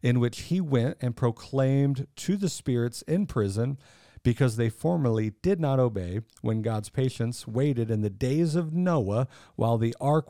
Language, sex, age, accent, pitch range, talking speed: English, male, 40-59, American, 110-140 Hz, 170 wpm